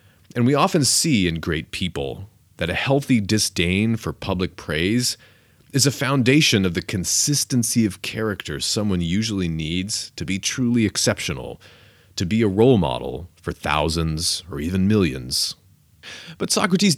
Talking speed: 145 wpm